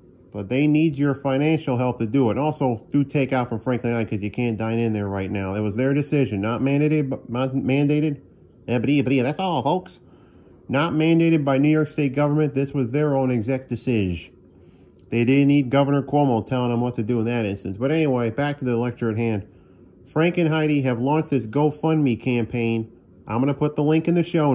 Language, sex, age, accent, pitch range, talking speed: English, male, 40-59, American, 115-145 Hz, 215 wpm